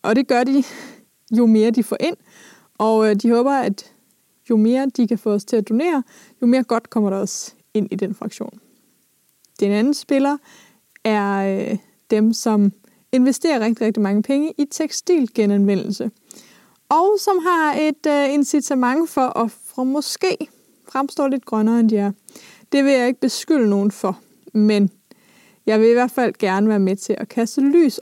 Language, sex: Danish, female